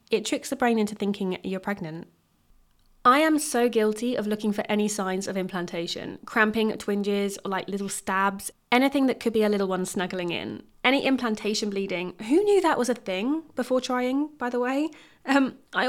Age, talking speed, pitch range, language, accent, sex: 20-39, 190 wpm, 200-245 Hz, English, British, female